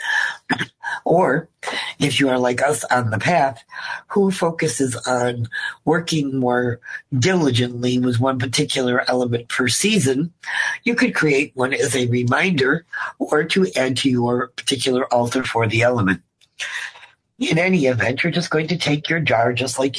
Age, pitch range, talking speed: 50-69, 125-155 Hz, 150 wpm